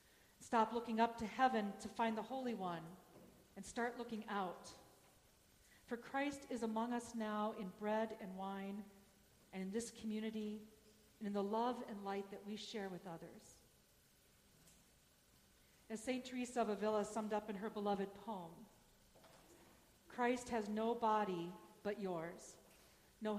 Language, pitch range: English, 200-235 Hz